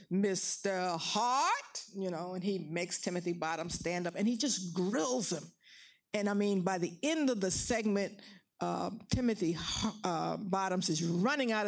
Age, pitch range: 50-69, 180-235 Hz